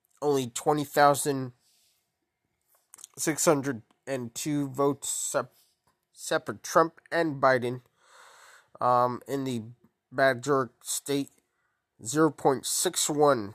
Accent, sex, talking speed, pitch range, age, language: American, male, 65 wpm, 120-160 Hz, 20-39, English